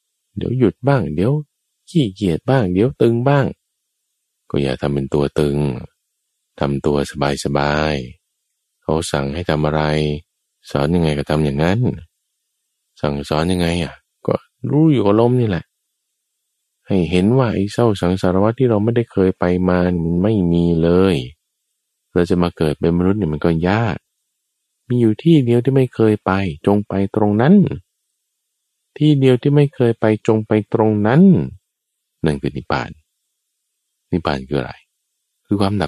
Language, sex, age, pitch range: Thai, male, 20-39, 75-115 Hz